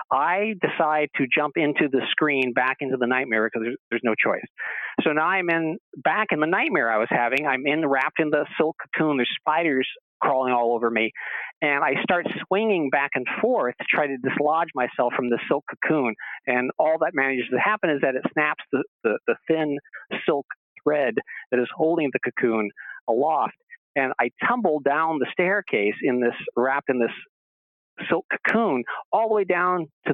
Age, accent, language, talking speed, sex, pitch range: 50-69, American, English, 195 wpm, male, 125-165 Hz